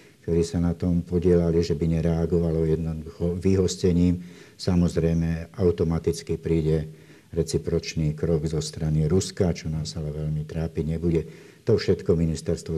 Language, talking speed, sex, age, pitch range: Slovak, 125 wpm, male, 60-79, 80-90 Hz